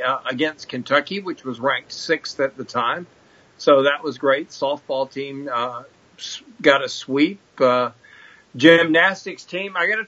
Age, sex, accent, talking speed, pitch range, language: 50-69, male, American, 150 wpm, 145-180 Hz, English